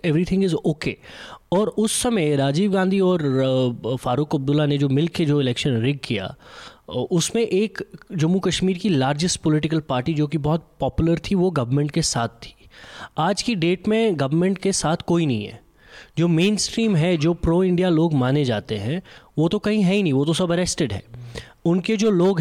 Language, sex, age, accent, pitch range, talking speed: English, male, 20-39, Indian, 140-185 Hz, 185 wpm